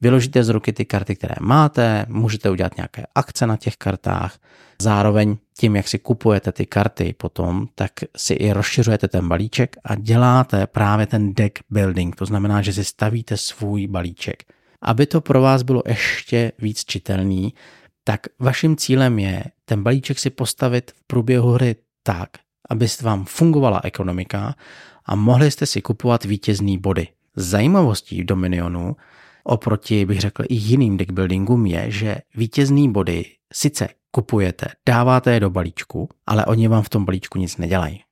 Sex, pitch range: male, 100-120 Hz